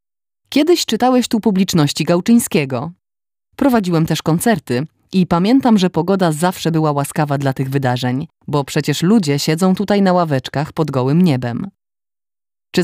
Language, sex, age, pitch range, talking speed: Polish, female, 20-39, 145-195 Hz, 135 wpm